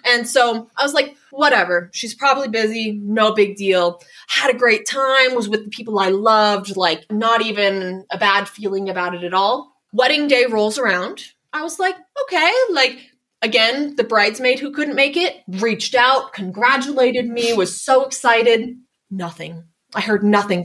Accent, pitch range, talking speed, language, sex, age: American, 205-265 Hz, 170 wpm, English, female, 20-39